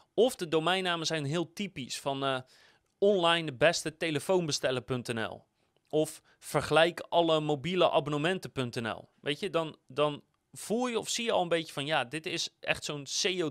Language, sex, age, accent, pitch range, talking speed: Dutch, male, 30-49, Dutch, 135-175 Hz, 160 wpm